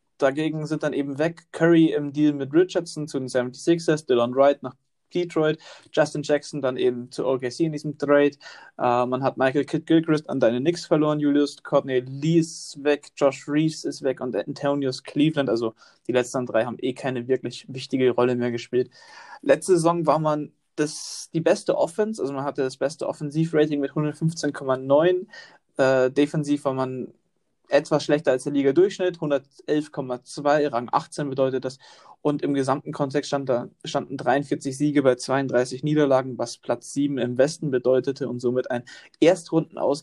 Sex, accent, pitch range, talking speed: male, German, 130-155 Hz, 165 wpm